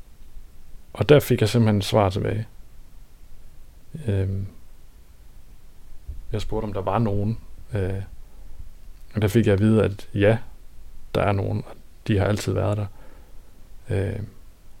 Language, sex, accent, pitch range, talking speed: Danish, male, native, 90-110 Hz, 140 wpm